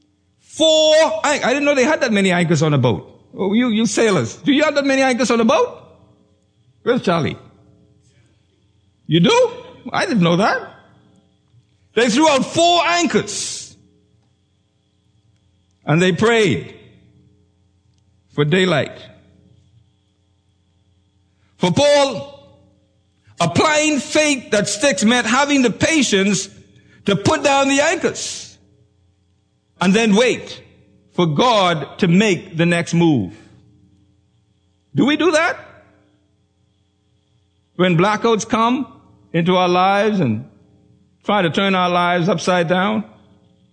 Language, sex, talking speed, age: English, male, 120 wpm, 60-79